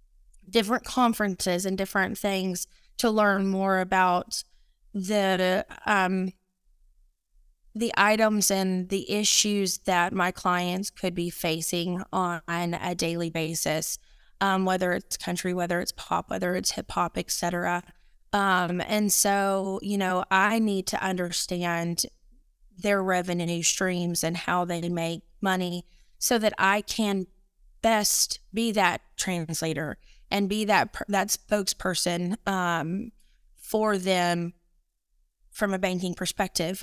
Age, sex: 20-39, female